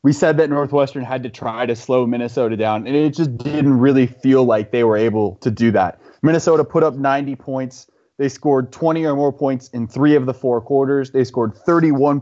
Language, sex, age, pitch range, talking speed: English, male, 20-39, 125-145 Hz, 215 wpm